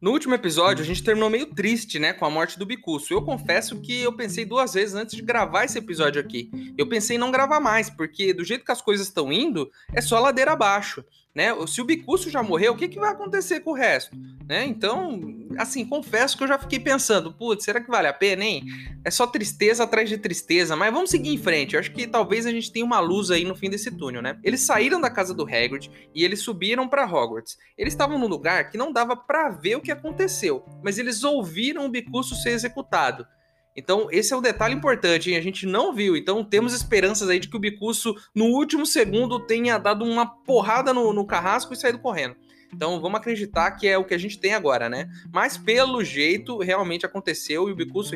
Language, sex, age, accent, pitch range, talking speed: Portuguese, male, 20-39, Brazilian, 175-250 Hz, 230 wpm